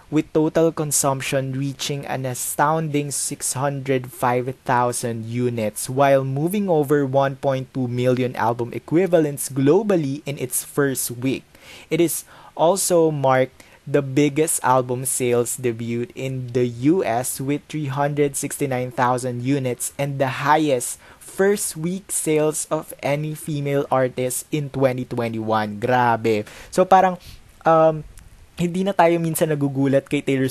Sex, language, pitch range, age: male, Filipino, 125-150 Hz, 20-39